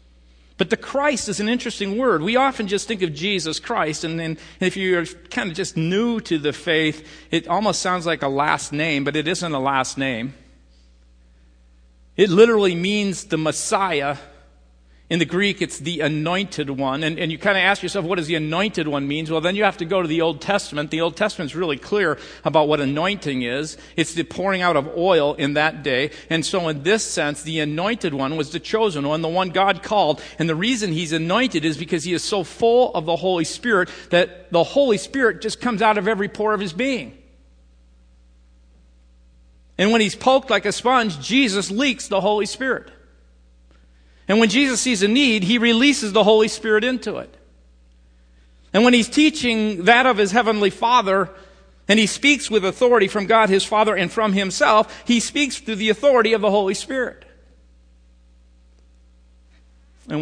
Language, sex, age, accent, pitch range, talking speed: English, male, 50-69, American, 125-210 Hz, 190 wpm